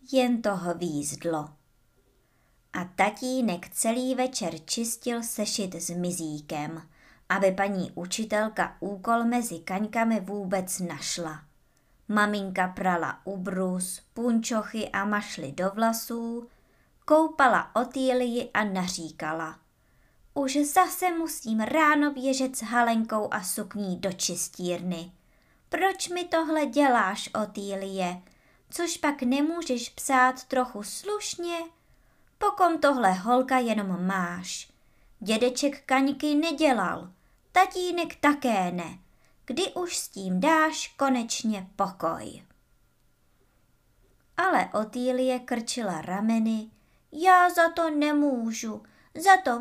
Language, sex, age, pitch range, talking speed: Czech, male, 20-39, 185-275 Hz, 100 wpm